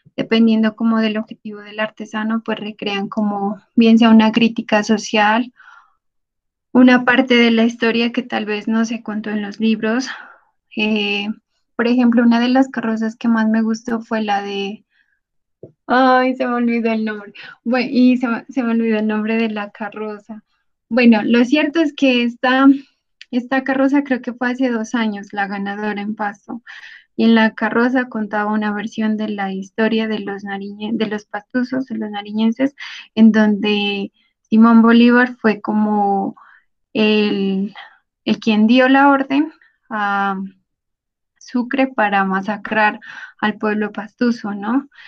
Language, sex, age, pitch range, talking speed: Spanish, female, 10-29, 210-240 Hz, 150 wpm